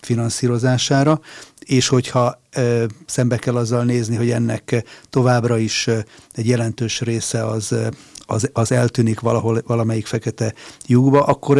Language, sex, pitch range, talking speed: Hungarian, male, 115-130 Hz, 135 wpm